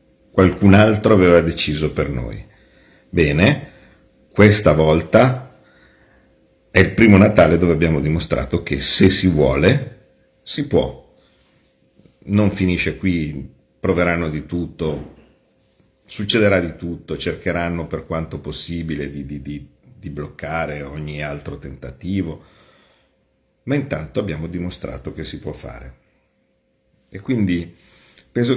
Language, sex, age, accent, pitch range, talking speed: Italian, male, 50-69, native, 80-105 Hz, 110 wpm